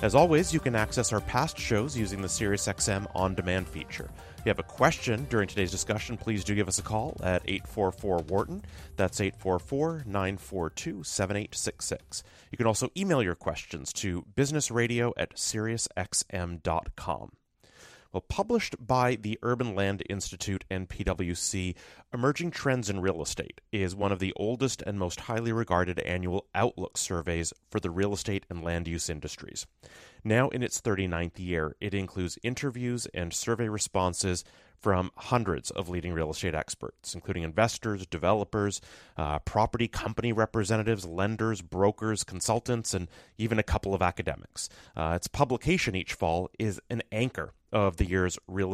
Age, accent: 30-49, American